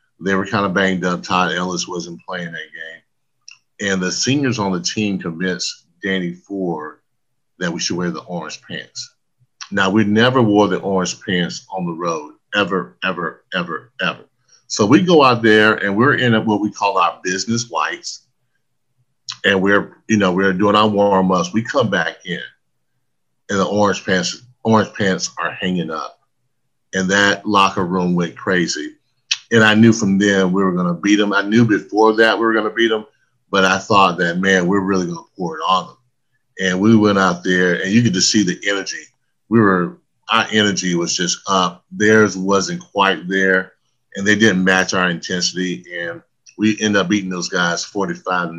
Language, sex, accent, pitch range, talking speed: English, male, American, 90-110 Hz, 190 wpm